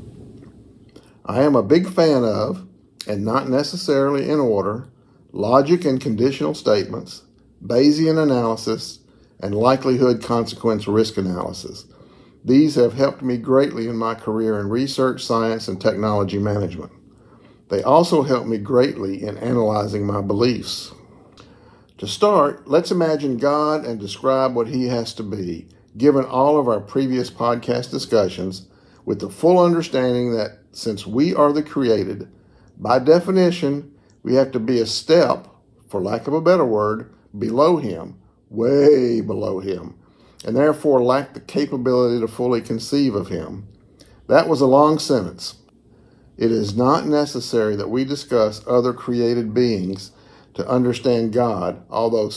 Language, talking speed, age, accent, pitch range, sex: English, 140 wpm, 50-69, American, 110-135 Hz, male